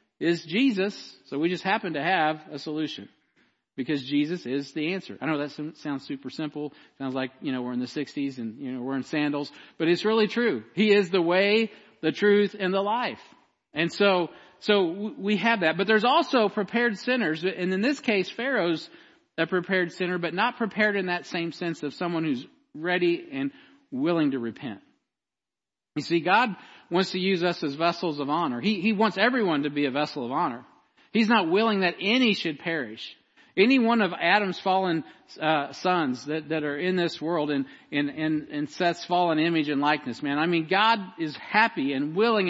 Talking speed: 200 wpm